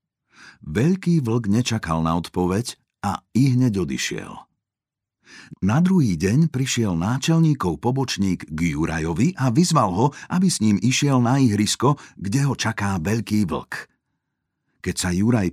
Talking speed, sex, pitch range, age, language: 130 wpm, male, 95-130 Hz, 50-69, Slovak